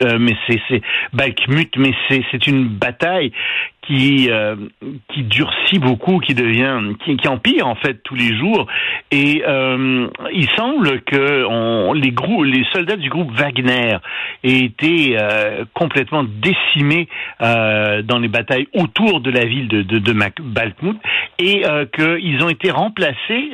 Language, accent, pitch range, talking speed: French, French, 120-165 Hz, 155 wpm